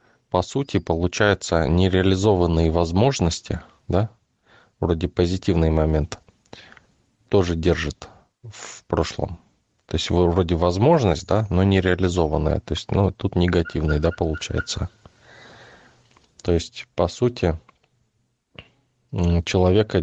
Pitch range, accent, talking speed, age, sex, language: 85-100 Hz, native, 95 wpm, 20-39, male, Russian